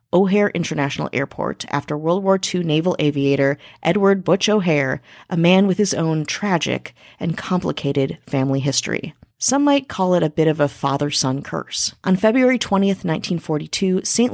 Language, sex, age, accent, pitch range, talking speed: English, female, 30-49, American, 145-195 Hz, 155 wpm